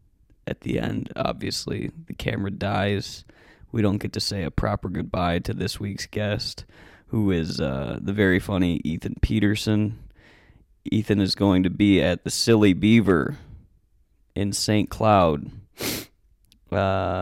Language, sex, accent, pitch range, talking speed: English, male, American, 85-105 Hz, 140 wpm